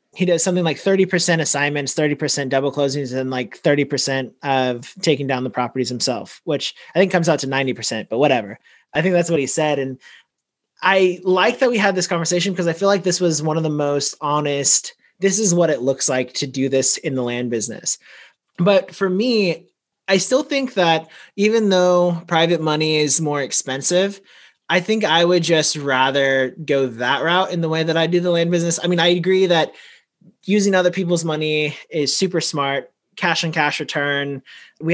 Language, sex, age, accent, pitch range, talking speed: English, male, 30-49, American, 135-180 Hz, 195 wpm